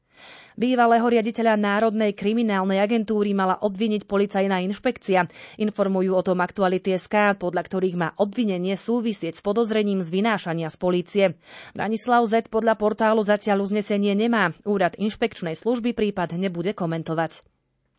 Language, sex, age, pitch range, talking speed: Slovak, female, 30-49, 185-225 Hz, 125 wpm